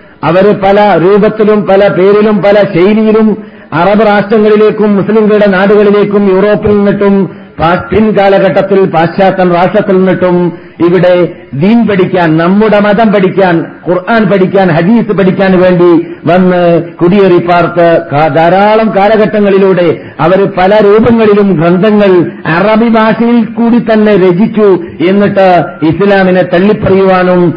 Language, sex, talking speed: Malayalam, male, 100 wpm